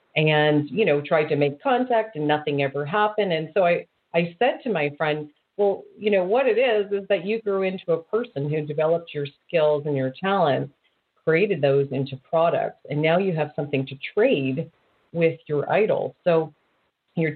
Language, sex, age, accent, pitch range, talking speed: English, female, 40-59, American, 135-170 Hz, 190 wpm